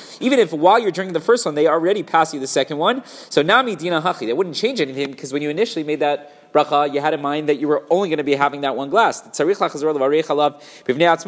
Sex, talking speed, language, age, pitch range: male, 245 wpm, English, 30-49, 150-190 Hz